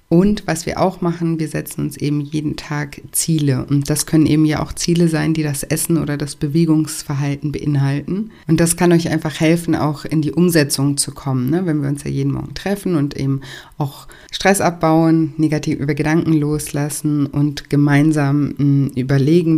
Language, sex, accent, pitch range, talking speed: German, female, German, 145-160 Hz, 185 wpm